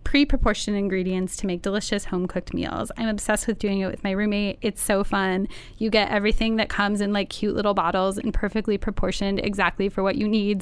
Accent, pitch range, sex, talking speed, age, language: American, 190-230 Hz, female, 215 wpm, 10-29, English